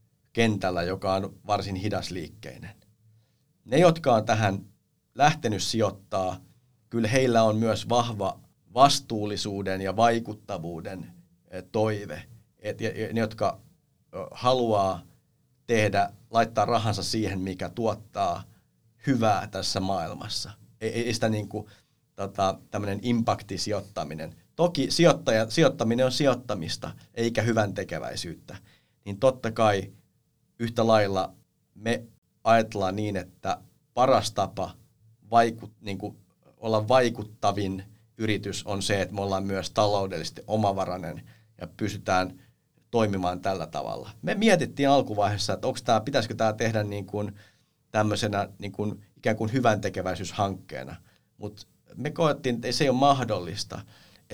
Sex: male